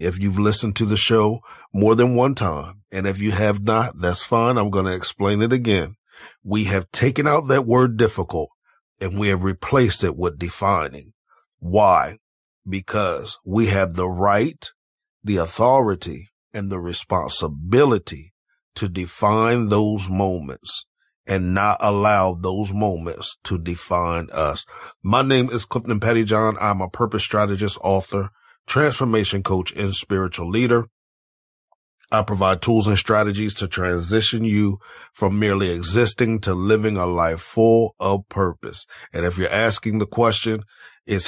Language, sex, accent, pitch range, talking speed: English, male, American, 90-110 Hz, 145 wpm